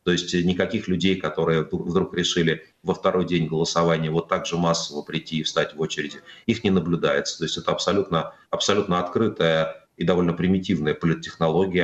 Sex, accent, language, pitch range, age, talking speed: male, native, Russian, 80-90 Hz, 30-49, 165 wpm